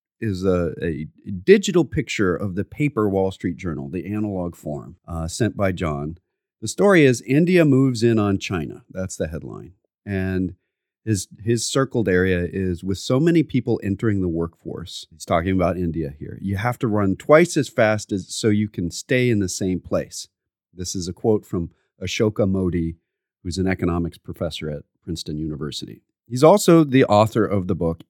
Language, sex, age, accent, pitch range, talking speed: English, male, 40-59, American, 90-120 Hz, 180 wpm